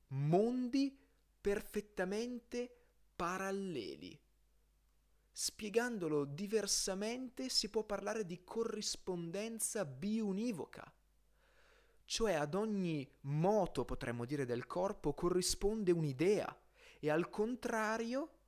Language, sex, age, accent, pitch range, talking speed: Italian, male, 30-49, native, 135-220 Hz, 80 wpm